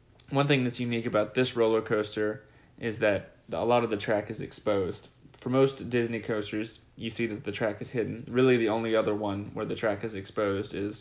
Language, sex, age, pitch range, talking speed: English, male, 20-39, 110-125 Hz, 215 wpm